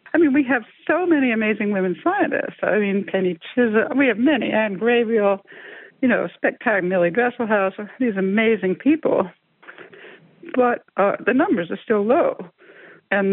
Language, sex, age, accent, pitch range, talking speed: English, female, 60-79, American, 190-245 Hz, 150 wpm